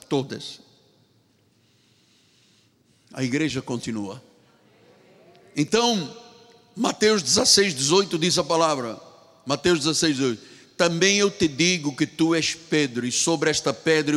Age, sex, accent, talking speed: 60-79, male, Brazilian, 110 wpm